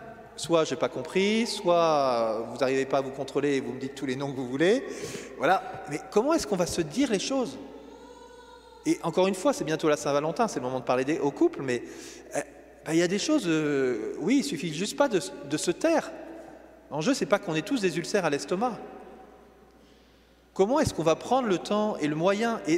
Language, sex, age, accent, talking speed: French, male, 30-49, French, 230 wpm